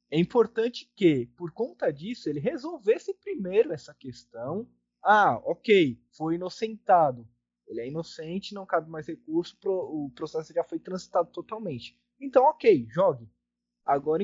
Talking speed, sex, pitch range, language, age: 135 wpm, male, 150-210 Hz, Portuguese, 20-39